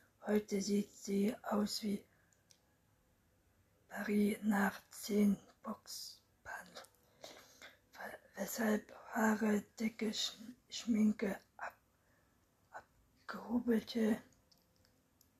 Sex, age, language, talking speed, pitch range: female, 60-79, German, 60 wpm, 195-225 Hz